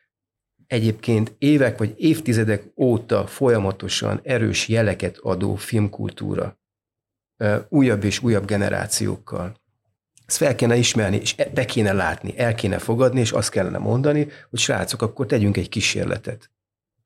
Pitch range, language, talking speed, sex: 105-125 Hz, Hungarian, 125 wpm, male